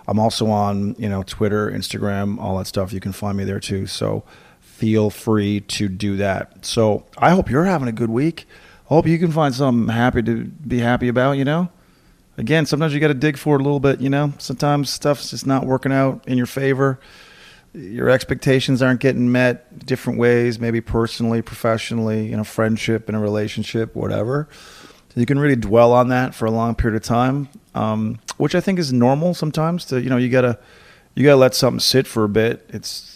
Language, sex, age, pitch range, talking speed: English, male, 40-59, 105-130 Hz, 210 wpm